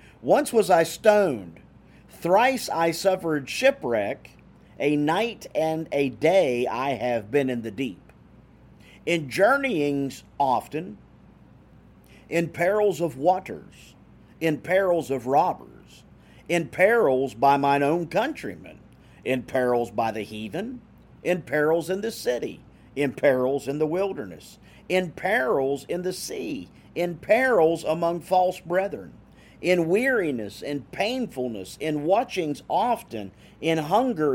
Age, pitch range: 50-69, 130-180 Hz